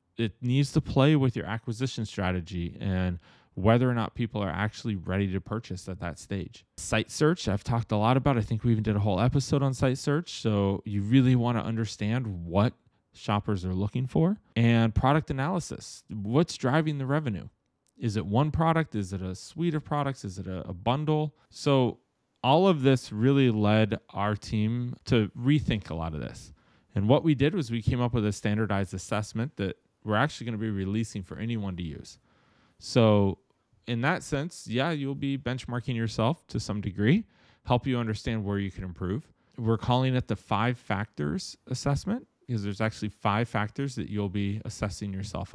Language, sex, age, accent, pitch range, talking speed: English, male, 20-39, American, 100-125 Hz, 190 wpm